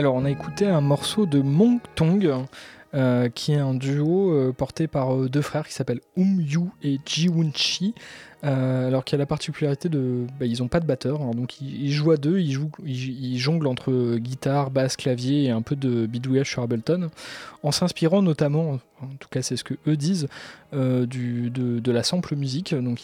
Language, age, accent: French, 20-39, French